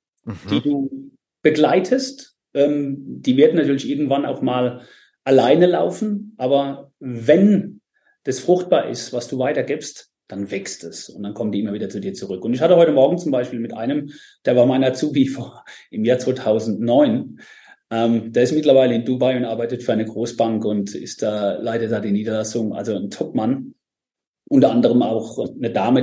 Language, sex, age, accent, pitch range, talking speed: German, male, 30-49, German, 115-145 Hz, 175 wpm